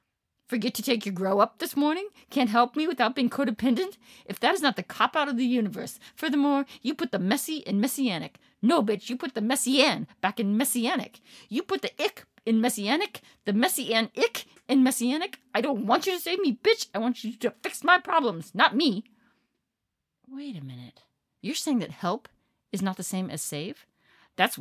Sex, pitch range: female, 190-270 Hz